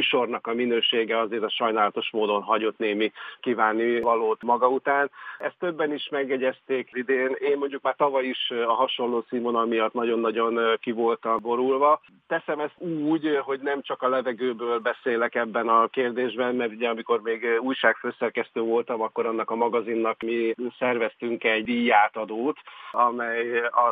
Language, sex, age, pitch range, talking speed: Hungarian, male, 50-69, 115-130 Hz, 150 wpm